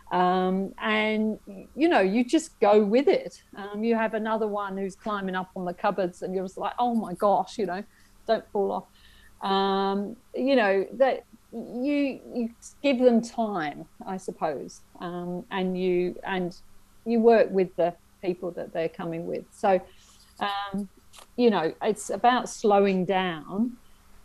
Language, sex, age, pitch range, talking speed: English, female, 40-59, 180-220 Hz, 155 wpm